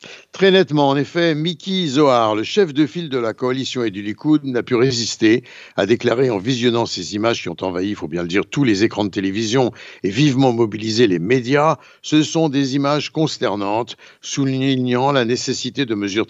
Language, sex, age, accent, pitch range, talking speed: Italian, male, 60-79, French, 105-140 Hz, 195 wpm